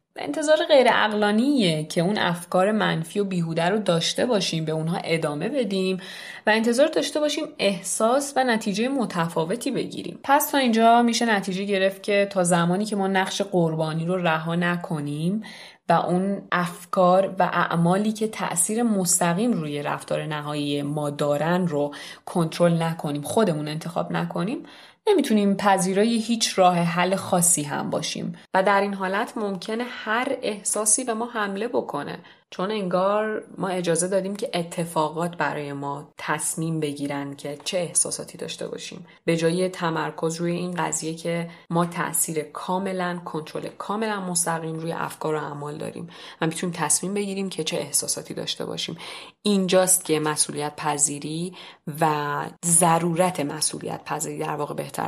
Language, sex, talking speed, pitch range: Persian, female, 145 wpm, 160-205 Hz